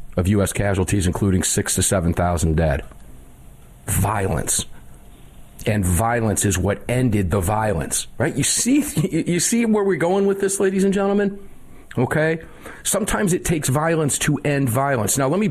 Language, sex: English, male